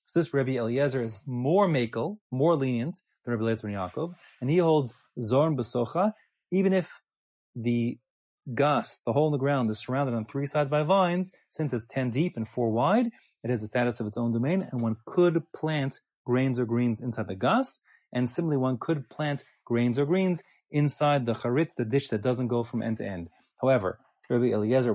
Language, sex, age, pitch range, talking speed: English, male, 30-49, 120-155 Hz, 195 wpm